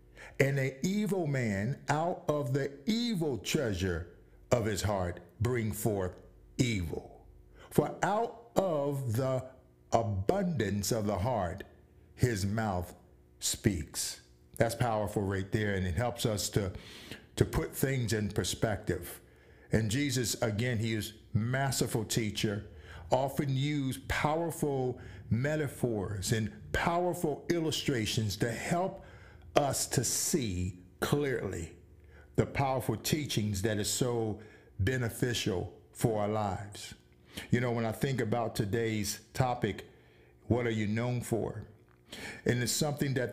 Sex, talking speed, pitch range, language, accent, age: male, 120 wpm, 100-135 Hz, English, American, 60-79